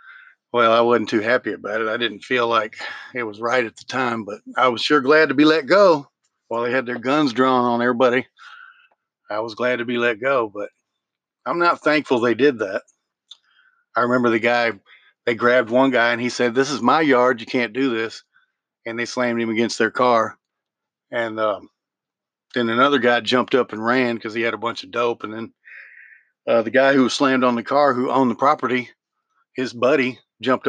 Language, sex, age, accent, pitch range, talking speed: English, male, 40-59, American, 120-140 Hz, 210 wpm